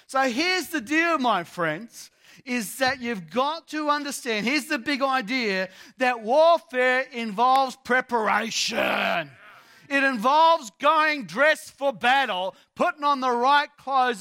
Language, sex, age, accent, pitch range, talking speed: English, male, 40-59, Australian, 155-265 Hz, 130 wpm